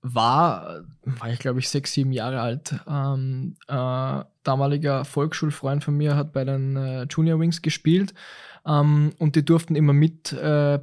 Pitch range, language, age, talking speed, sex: 140-165 Hz, German, 20-39, 160 wpm, male